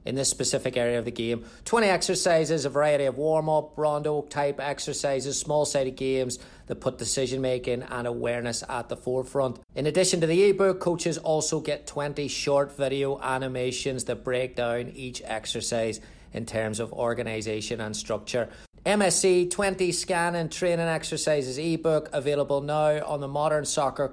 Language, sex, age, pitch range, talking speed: English, male, 30-49, 120-150 Hz, 160 wpm